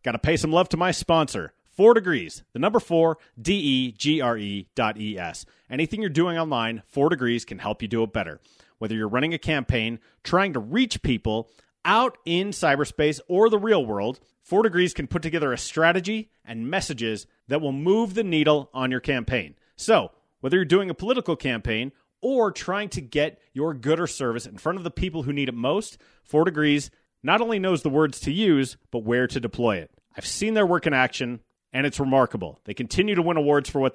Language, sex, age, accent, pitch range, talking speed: English, male, 30-49, American, 120-180 Hz, 195 wpm